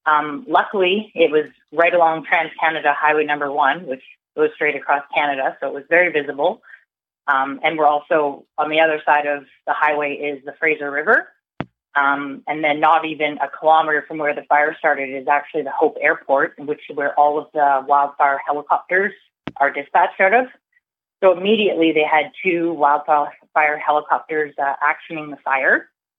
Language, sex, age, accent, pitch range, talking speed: English, female, 30-49, American, 145-175 Hz, 170 wpm